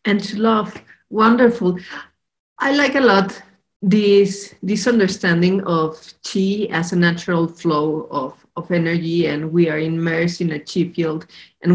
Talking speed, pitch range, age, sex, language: 150 wpm, 165-200 Hz, 40-59, female, English